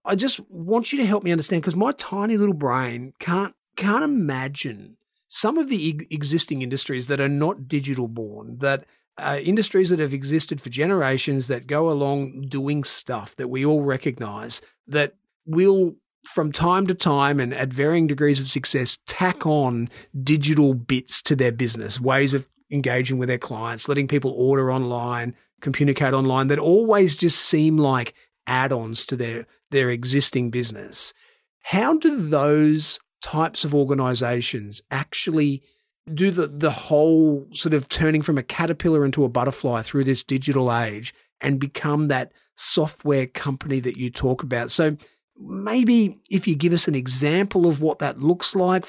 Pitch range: 130-165 Hz